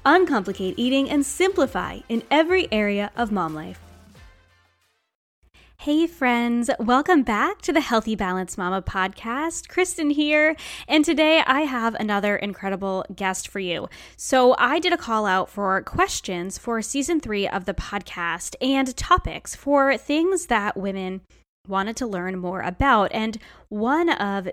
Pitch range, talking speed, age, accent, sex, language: 195-275 Hz, 145 wpm, 10-29, American, female, English